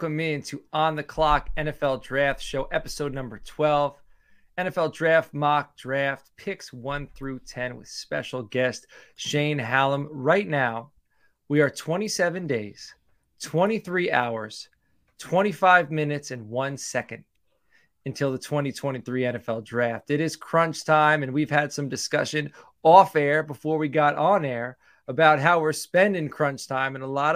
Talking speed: 145 wpm